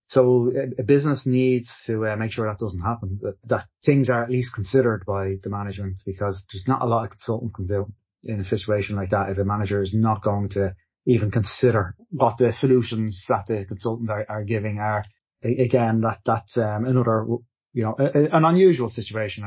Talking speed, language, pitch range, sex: 205 wpm, English, 105-120 Hz, male